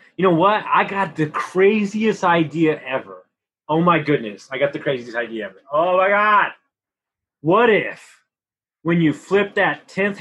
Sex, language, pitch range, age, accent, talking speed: male, English, 140-195 Hz, 20-39, American, 165 wpm